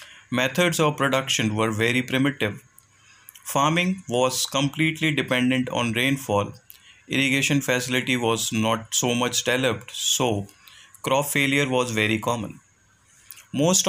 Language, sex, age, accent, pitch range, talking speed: English, male, 30-49, Indian, 110-140 Hz, 110 wpm